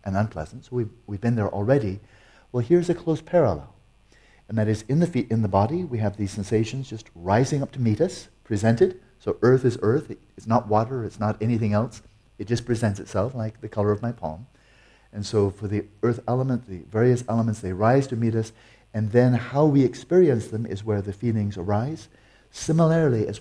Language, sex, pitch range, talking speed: English, male, 105-125 Hz, 215 wpm